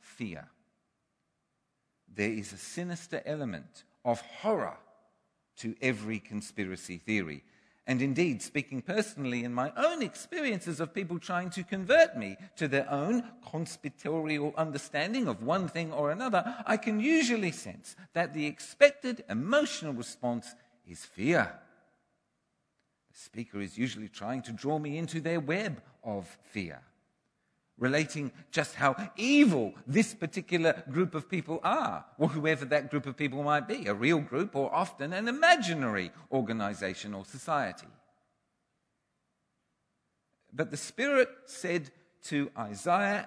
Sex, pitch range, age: male, 125-200 Hz, 50-69